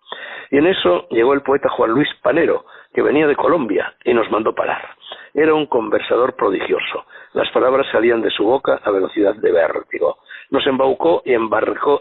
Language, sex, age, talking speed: Spanish, male, 60-79, 175 wpm